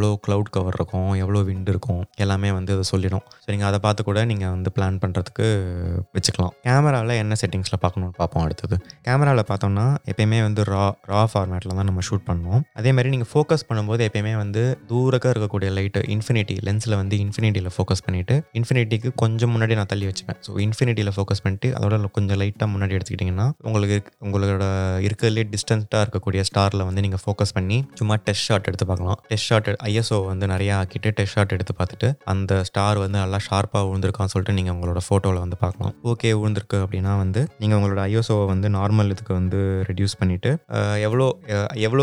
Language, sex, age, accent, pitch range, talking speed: Tamil, male, 20-39, native, 95-110 Hz, 60 wpm